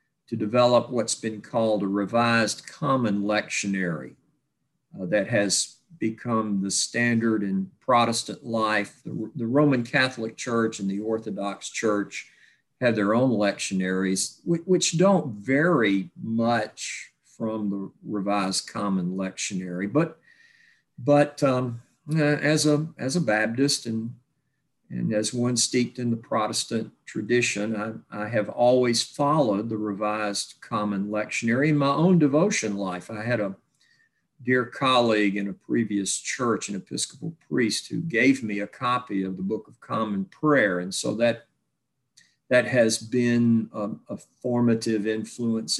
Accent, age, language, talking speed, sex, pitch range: American, 50-69, English, 140 wpm, male, 105-135 Hz